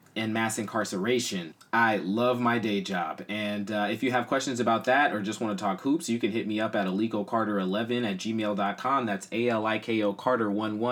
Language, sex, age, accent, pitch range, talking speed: English, male, 20-39, American, 100-125 Hz, 190 wpm